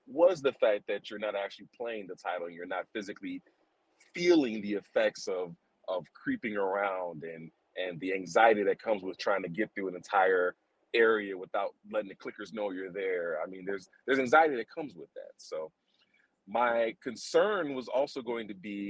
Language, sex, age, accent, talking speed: English, male, 30-49, American, 185 wpm